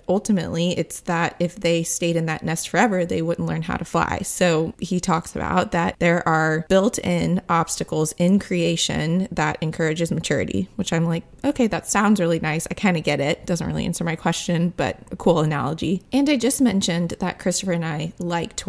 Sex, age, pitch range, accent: female, 20-39, 165-185 Hz, American